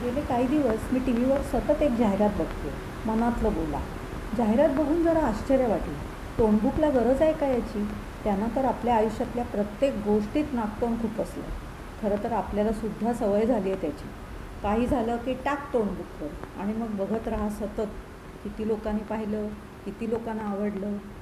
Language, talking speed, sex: Marathi, 110 wpm, female